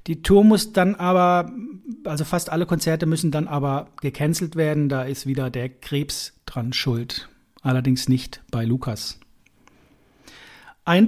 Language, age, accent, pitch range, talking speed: German, 40-59, German, 140-180 Hz, 140 wpm